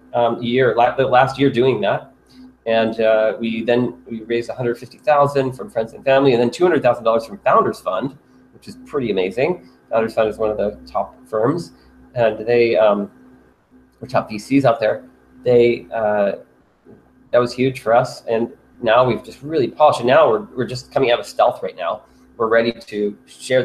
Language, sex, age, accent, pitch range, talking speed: English, male, 30-49, American, 105-135 Hz, 195 wpm